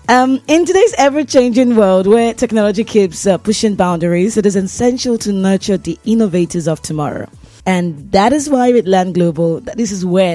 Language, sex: English, female